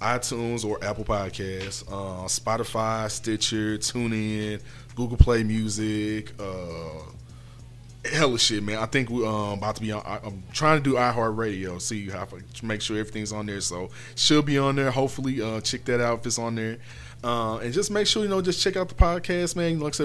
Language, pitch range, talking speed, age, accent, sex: English, 110-135 Hz, 215 wpm, 20-39, American, male